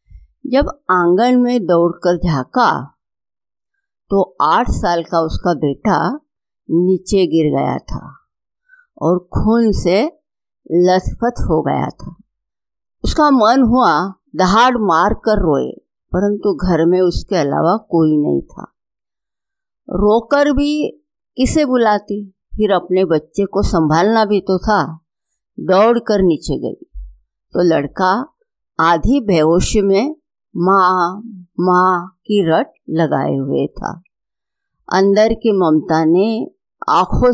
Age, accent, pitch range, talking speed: 50-69, native, 170-240 Hz, 110 wpm